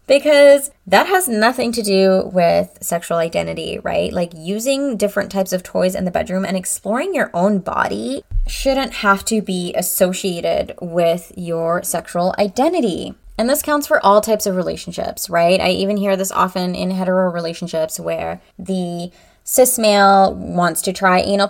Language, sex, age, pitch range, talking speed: English, female, 20-39, 175-215 Hz, 160 wpm